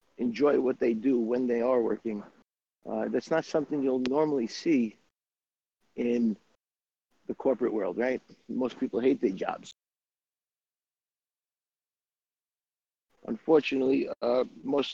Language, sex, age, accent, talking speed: English, male, 50-69, American, 115 wpm